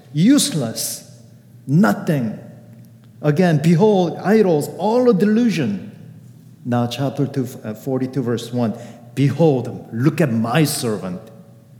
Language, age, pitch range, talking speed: English, 50-69, 115-145 Hz, 90 wpm